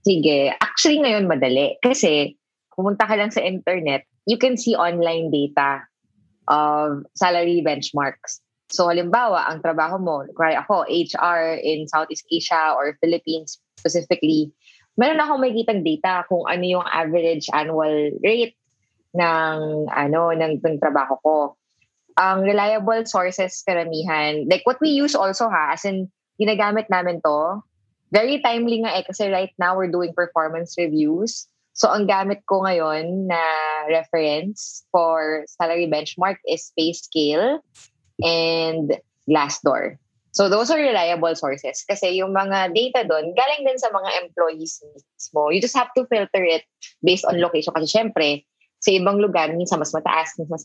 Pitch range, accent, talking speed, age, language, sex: 155-195 Hz, Filipino, 150 wpm, 20-39, English, female